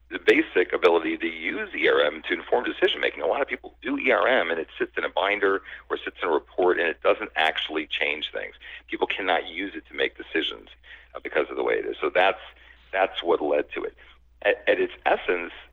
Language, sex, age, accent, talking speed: English, male, 50-69, American, 215 wpm